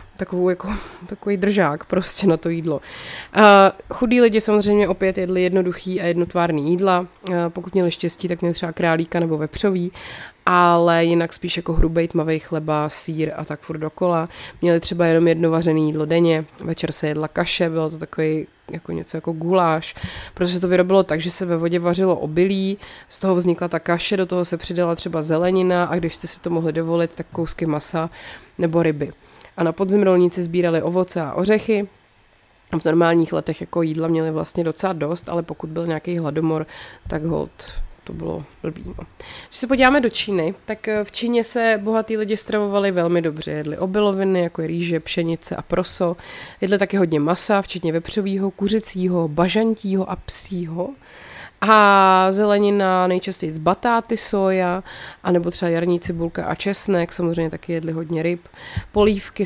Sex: female